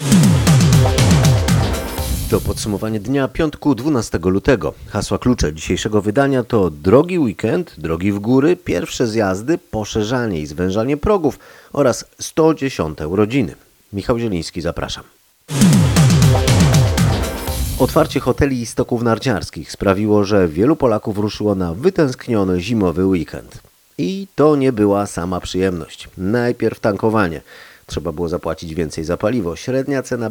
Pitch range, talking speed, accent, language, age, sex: 90-125 Hz, 115 wpm, native, Polish, 40-59, male